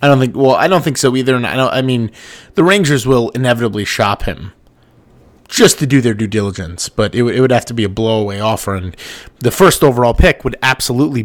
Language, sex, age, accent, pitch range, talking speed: English, male, 30-49, American, 110-130 Hz, 235 wpm